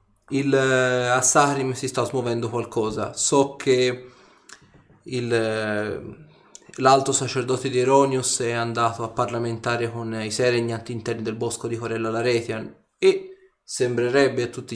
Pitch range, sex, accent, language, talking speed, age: 115-135 Hz, male, native, Italian, 125 wpm, 20-39